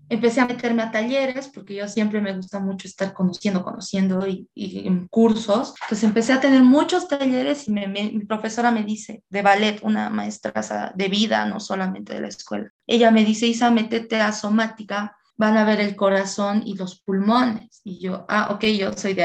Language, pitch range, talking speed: Spanish, 195-240 Hz, 200 wpm